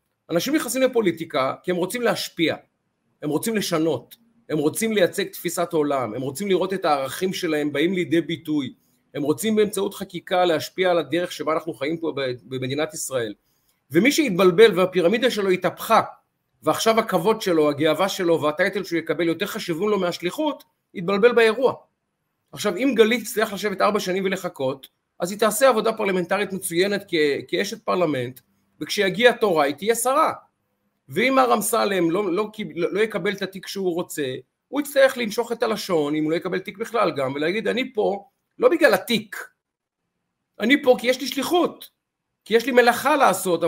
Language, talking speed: Hebrew, 160 wpm